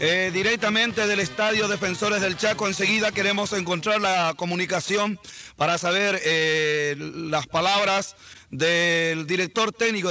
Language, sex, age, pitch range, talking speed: Spanish, male, 40-59, 165-210 Hz, 120 wpm